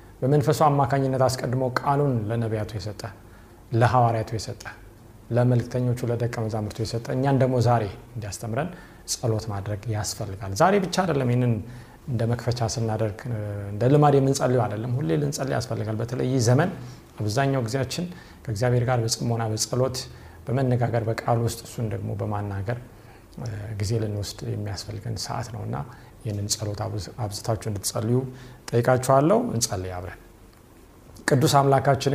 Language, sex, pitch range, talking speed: Amharic, male, 110-135 Hz, 120 wpm